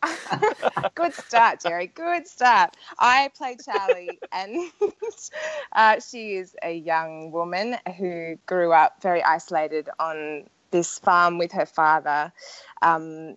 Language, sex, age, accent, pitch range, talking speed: English, female, 20-39, Australian, 155-195 Hz, 120 wpm